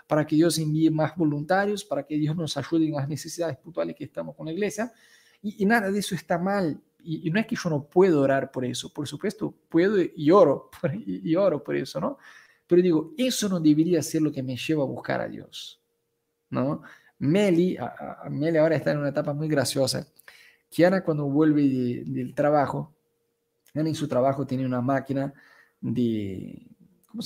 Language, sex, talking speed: Spanish, male, 195 wpm